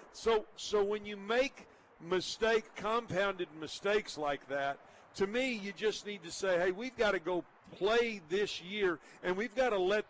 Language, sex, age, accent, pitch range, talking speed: English, male, 50-69, American, 175-225 Hz, 180 wpm